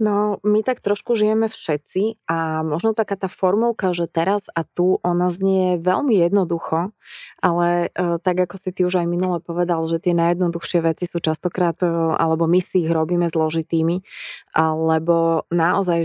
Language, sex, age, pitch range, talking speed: Slovak, female, 20-39, 165-185 Hz, 155 wpm